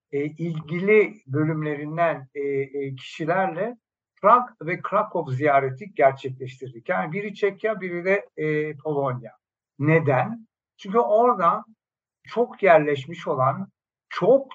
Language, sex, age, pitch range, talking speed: Turkish, male, 60-79, 145-205 Hz, 85 wpm